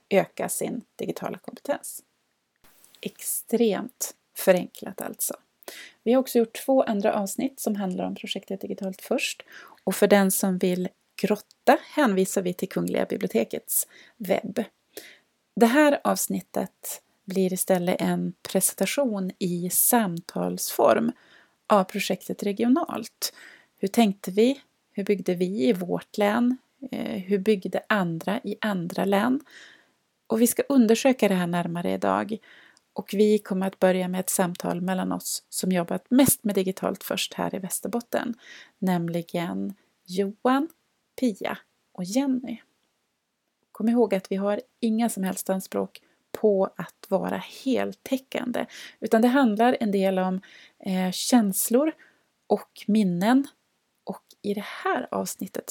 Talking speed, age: 125 wpm, 30-49